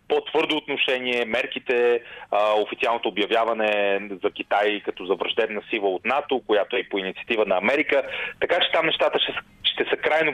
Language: Bulgarian